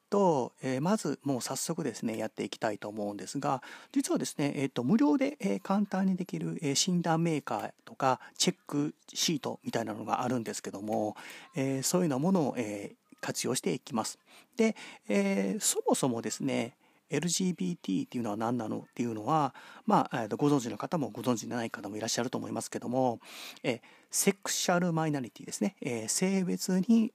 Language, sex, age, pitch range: Japanese, male, 40-59, 120-185 Hz